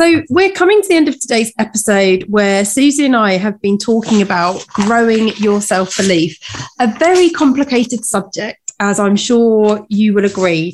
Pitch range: 200-260 Hz